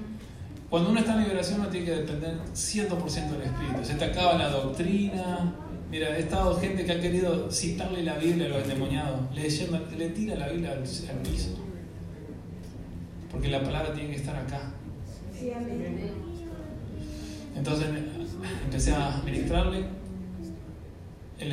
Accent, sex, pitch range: Argentinian, male, 105-165 Hz